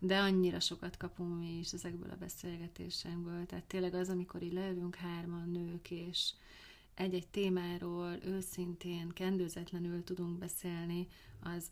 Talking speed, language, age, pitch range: 125 wpm, Hungarian, 30-49, 165-180 Hz